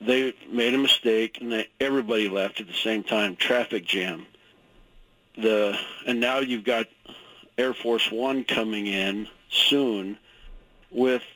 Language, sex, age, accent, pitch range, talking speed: English, male, 50-69, American, 110-130 Hz, 135 wpm